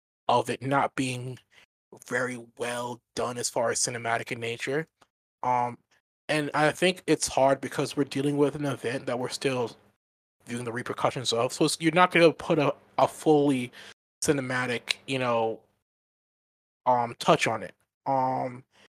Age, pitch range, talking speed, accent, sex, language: 20-39, 120-145 Hz, 160 wpm, American, male, English